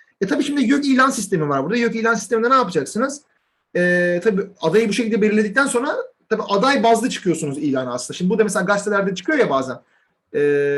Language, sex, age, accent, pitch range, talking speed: Turkish, male, 40-59, native, 145-205 Hz, 190 wpm